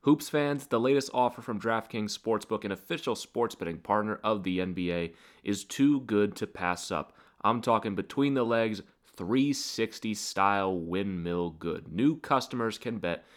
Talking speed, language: 155 wpm, English